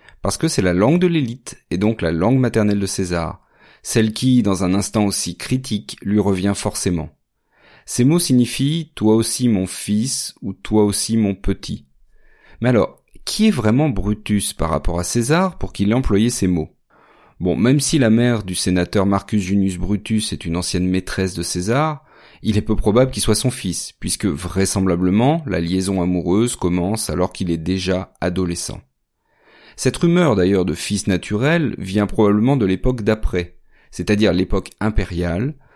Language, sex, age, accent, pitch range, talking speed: French, male, 30-49, French, 90-120 Hz, 170 wpm